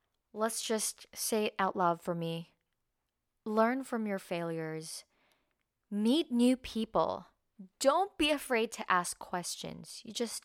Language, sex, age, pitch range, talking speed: Filipino, female, 20-39, 170-220 Hz, 130 wpm